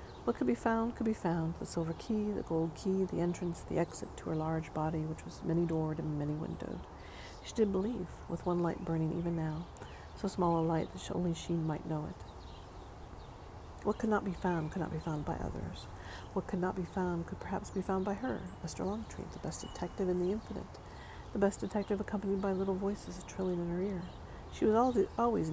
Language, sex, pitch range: English, female, 160-190 Hz